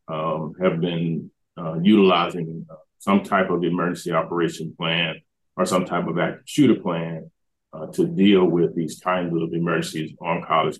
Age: 30-49